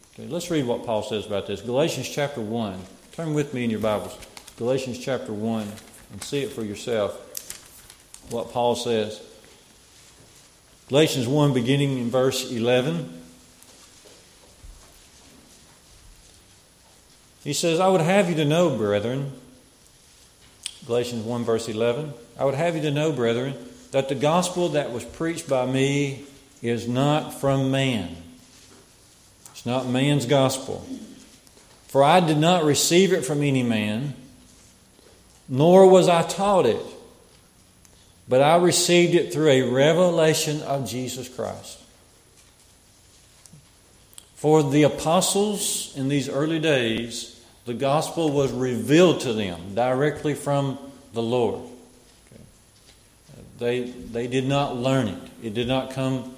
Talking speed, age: 125 wpm, 40-59